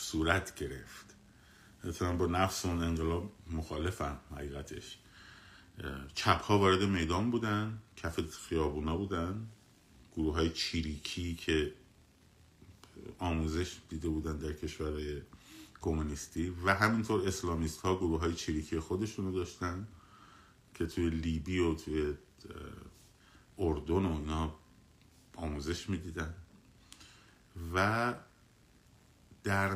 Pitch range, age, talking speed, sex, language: 80-100 Hz, 50-69, 95 wpm, male, Persian